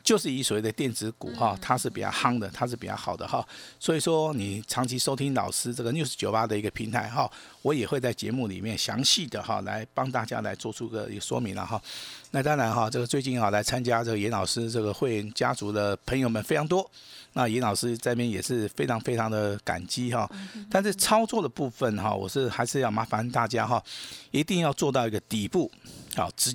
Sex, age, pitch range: male, 50-69, 110-145 Hz